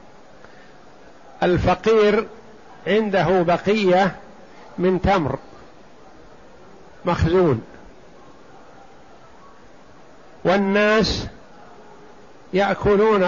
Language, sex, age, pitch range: Arabic, male, 60-79, 170-205 Hz